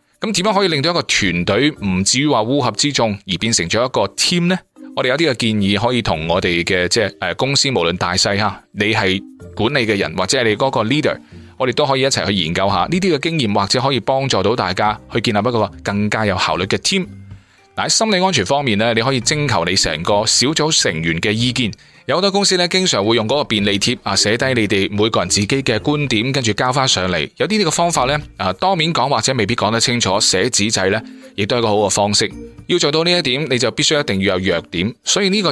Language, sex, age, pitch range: Chinese, male, 20-39, 100-145 Hz